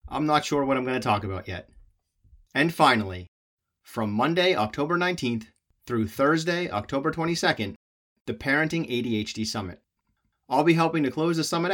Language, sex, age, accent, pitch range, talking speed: English, male, 30-49, American, 105-155 Hz, 160 wpm